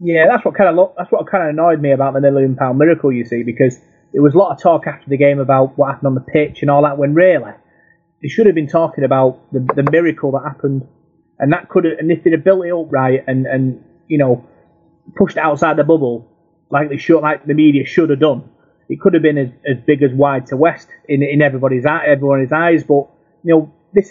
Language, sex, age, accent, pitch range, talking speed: English, male, 30-49, British, 135-165 Hz, 255 wpm